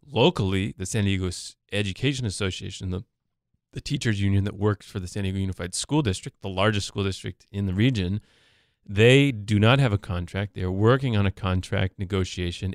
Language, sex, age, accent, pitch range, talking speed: English, male, 30-49, American, 95-110 Hz, 180 wpm